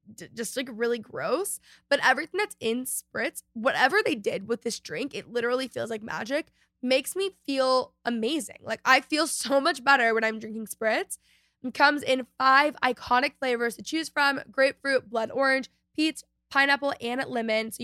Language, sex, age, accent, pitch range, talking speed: English, female, 10-29, American, 225-275 Hz, 170 wpm